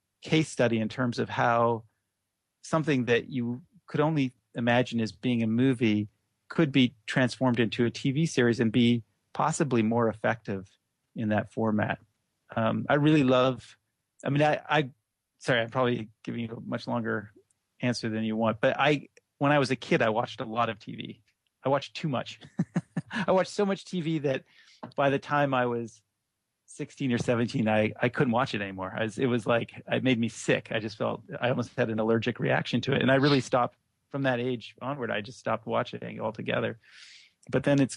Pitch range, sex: 110-130 Hz, male